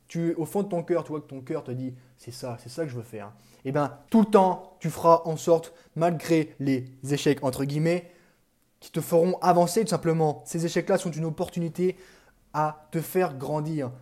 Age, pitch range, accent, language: 20-39, 145-195 Hz, French, French